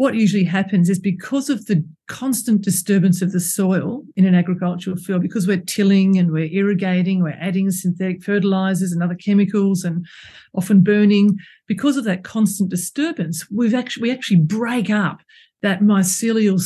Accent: Australian